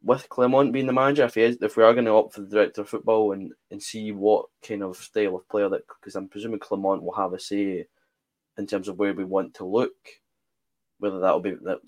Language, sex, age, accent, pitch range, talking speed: English, male, 20-39, British, 95-105 Hz, 240 wpm